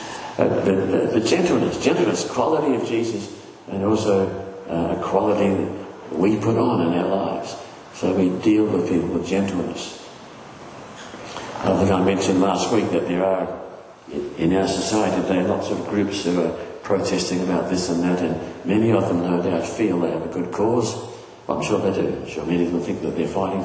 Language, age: English, 50-69